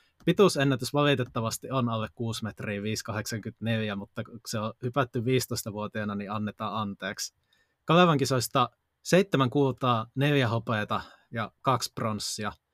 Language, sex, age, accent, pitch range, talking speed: Finnish, male, 20-39, native, 105-125 Hz, 115 wpm